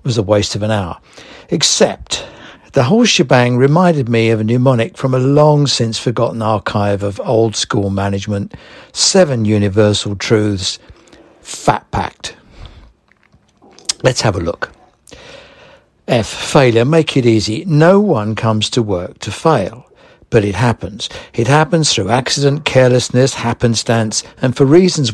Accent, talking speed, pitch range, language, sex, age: British, 140 wpm, 105-140 Hz, English, male, 60-79